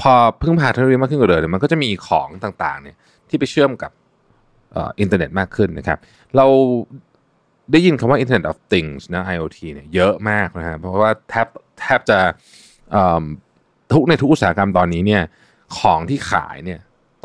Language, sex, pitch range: Thai, male, 90-125 Hz